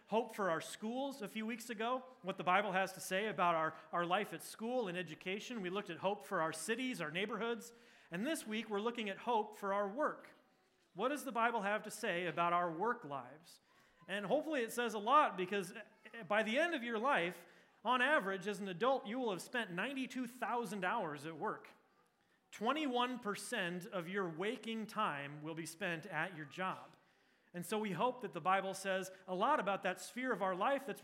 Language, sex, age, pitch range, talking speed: English, male, 30-49, 190-235 Hz, 205 wpm